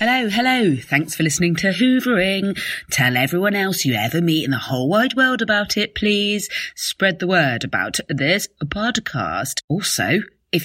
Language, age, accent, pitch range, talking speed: English, 30-49, British, 130-195 Hz, 165 wpm